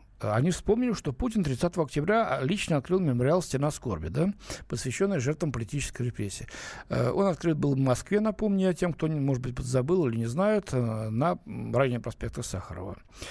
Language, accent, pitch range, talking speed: Russian, native, 125-190 Hz, 160 wpm